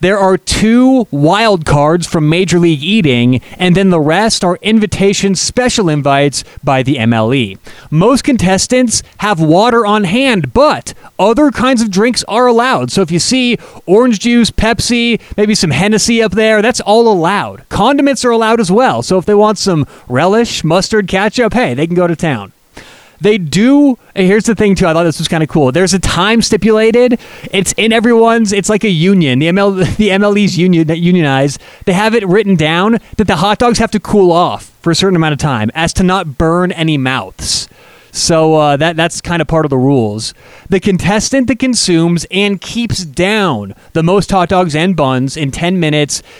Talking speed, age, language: 195 wpm, 30-49, English